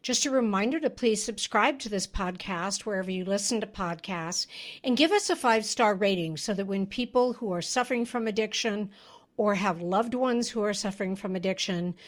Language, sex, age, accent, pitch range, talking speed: English, female, 60-79, American, 195-250 Hz, 195 wpm